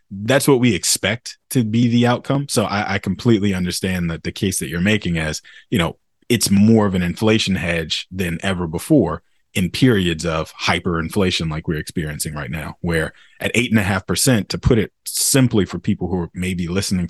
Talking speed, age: 200 wpm, 30-49